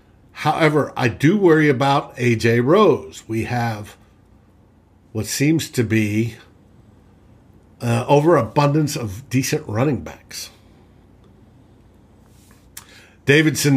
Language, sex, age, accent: English, male, 60-79, American